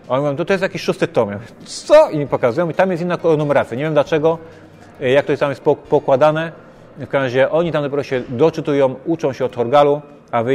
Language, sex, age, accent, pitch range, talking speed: Polish, male, 30-49, native, 120-145 Hz, 230 wpm